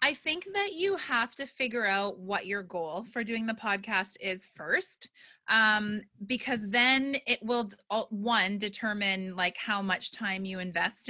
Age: 20-39